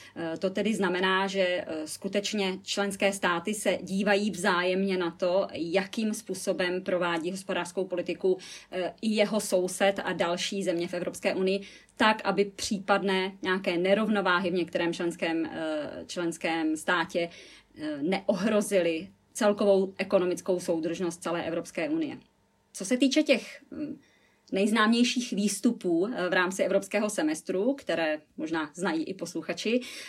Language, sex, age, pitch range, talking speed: Czech, female, 30-49, 180-220 Hz, 115 wpm